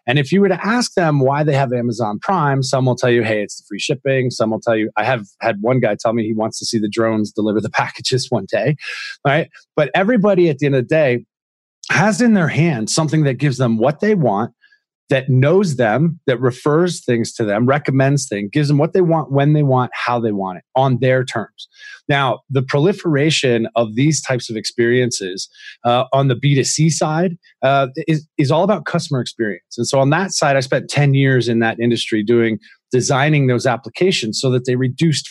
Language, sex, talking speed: English, male, 220 wpm